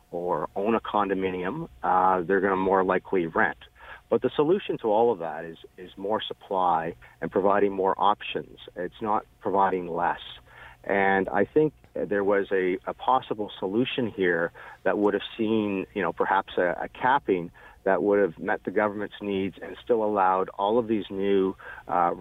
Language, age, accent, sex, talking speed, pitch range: English, 50-69, American, male, 175 wpm, 95-105 Hz